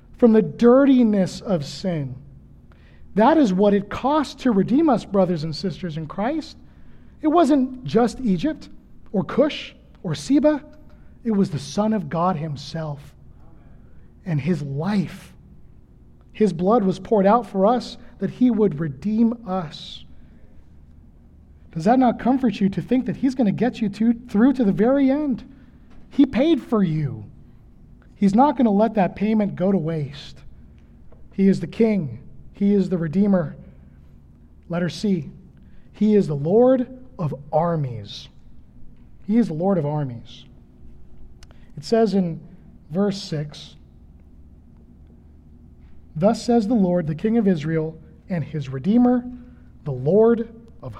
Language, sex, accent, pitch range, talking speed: English, male, American, 145-230 Hz, 140 wpm